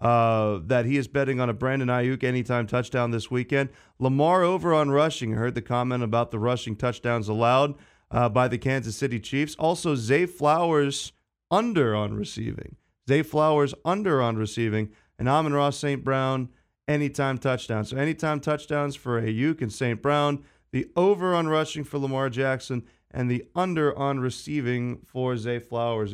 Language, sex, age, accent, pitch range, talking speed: English, male, 30-49, American, 115-145 Hz, 165 wpm